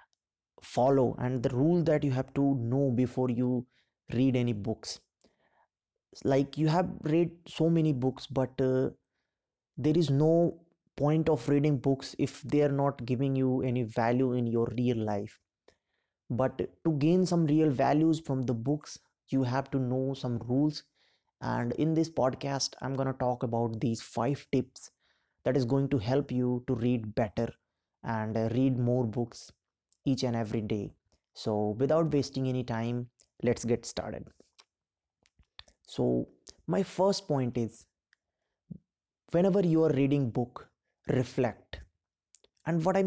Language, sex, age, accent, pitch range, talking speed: English, male, 20-39, Indian, 125-150 Hz, 150 wpm